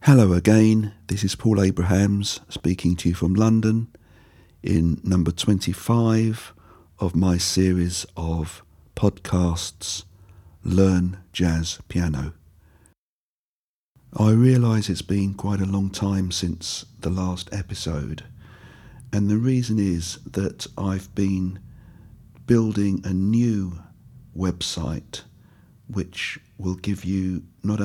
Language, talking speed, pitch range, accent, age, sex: English, 110 wpm, 85-105 Hz, British, 50-69, male